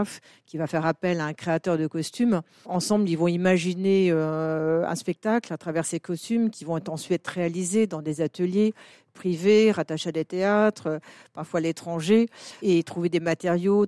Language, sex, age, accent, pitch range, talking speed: French, female, 50-69, French, 165-195 Hz, 175 wpm